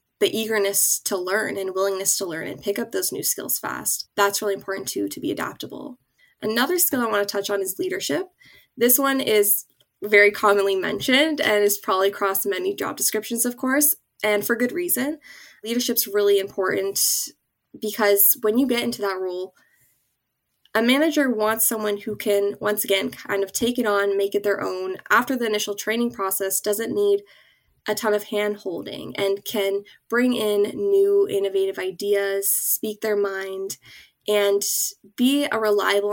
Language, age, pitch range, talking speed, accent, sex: English, 10-29, 200-270 Hz, 170 wpm, American, female